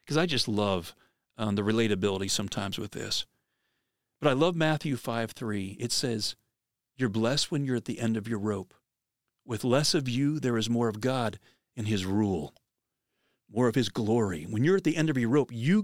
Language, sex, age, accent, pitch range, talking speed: English, male, 40-59, American, 110-150 Hz, 195 wpm